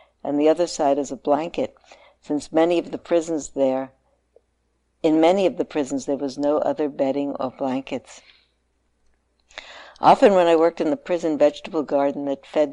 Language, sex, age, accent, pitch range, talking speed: English, female, 60-79, American, 140-165 Hz, 170 wpm